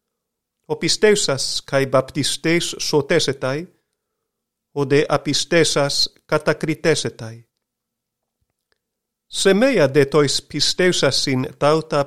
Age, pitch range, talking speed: 50-69, 135-165 Hz, 70 wpm